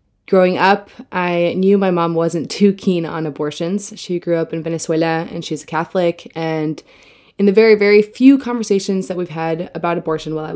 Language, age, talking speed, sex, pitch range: English, 20-39, 195 wpm, female, 160-185 Hz